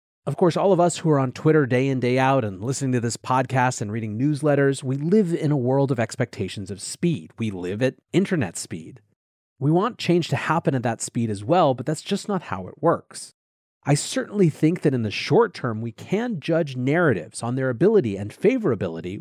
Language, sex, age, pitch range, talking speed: English, male, 30-49, 110-150 Hz, 215 wpm